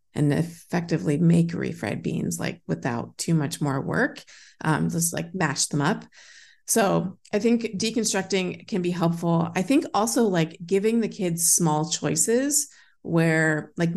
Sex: female